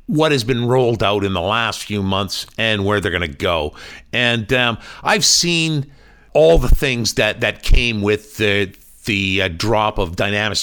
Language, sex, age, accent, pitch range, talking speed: English, male, 50-69, American, 100-135 Hz, 185 wpm